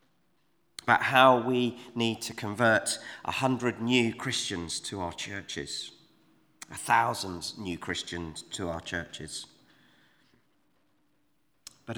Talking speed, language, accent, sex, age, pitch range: 105 wpm, English, British, male, 30-49, 95-125 Hz